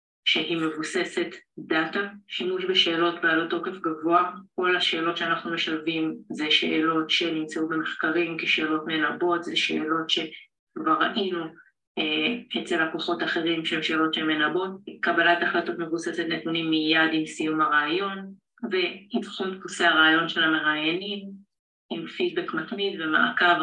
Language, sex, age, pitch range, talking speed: Hebrew, female, 30-49, 160-195 Hz, 115 wpm